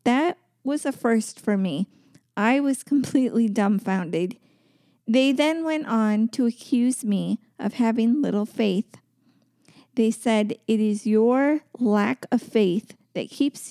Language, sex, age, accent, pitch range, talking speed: English, female, 40-59, American, 215-250 Hz, 135 wpm